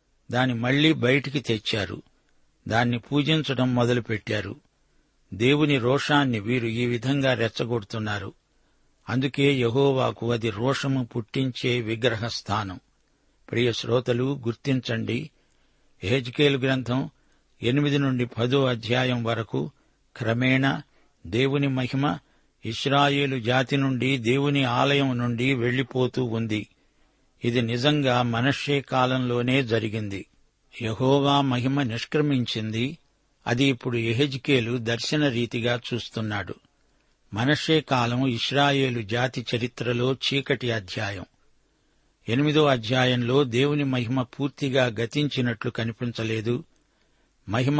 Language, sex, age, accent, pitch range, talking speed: Telugu, male, 60-79, native, 120-140 Hz, 90 wpm